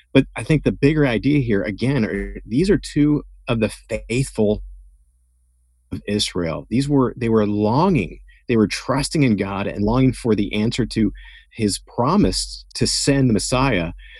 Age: 40-59